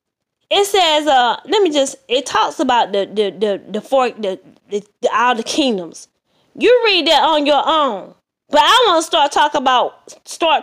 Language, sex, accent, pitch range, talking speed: English, female, American, 245-325 Hz, 190 wpm